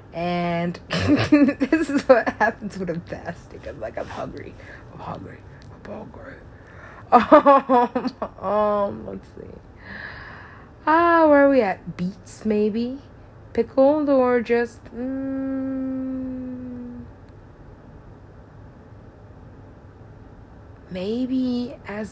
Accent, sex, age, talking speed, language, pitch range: American, female, 20-39, 90 wpm, English, 155-245 Hz